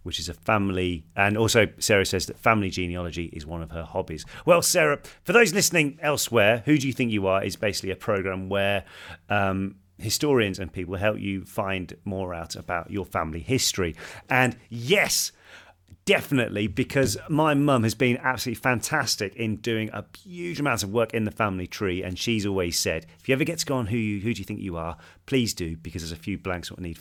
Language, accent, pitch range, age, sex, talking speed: English, British, 90-115 Hz, 40-59, male, 210 wpm